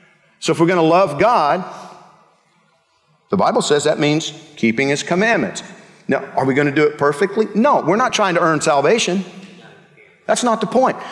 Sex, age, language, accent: male, 50-69, English, American